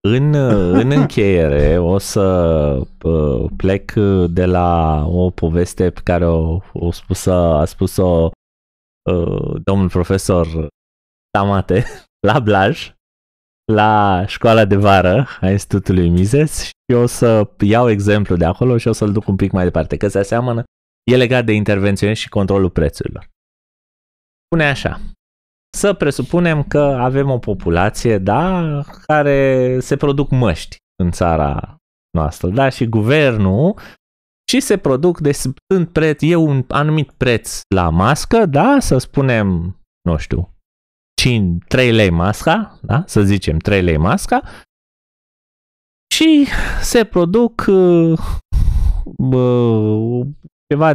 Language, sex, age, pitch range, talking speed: Romanian, male, 20-39, 90-135 Hz, 125 wpm